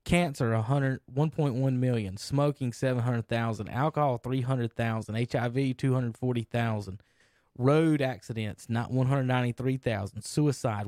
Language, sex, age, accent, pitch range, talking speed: English, male, 20-39, American, 115-140 Hz, 75 wpm